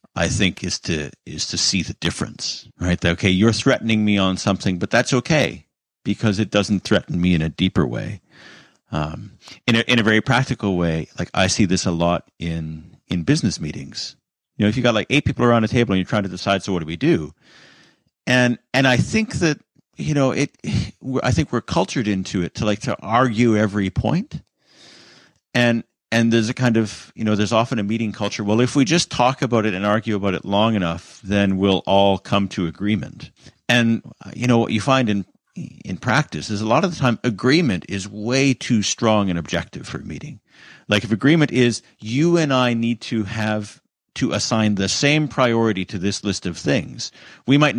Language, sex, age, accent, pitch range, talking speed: English, male, 50-69, American, 95-120 Hz, 210 wpm